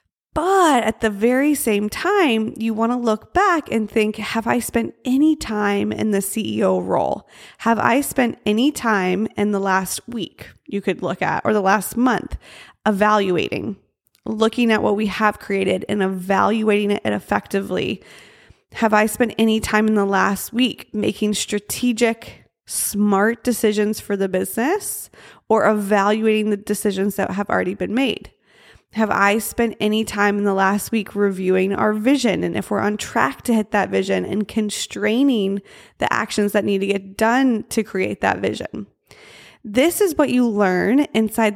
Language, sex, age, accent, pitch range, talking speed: English, female, 20-39, American, 200-230 Hz, 165 wpm